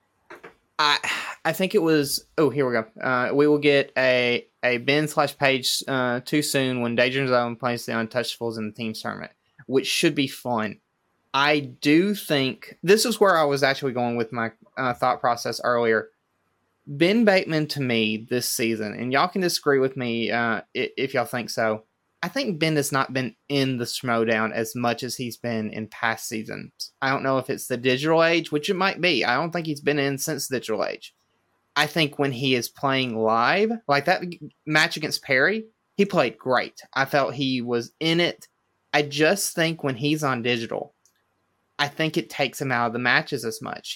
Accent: American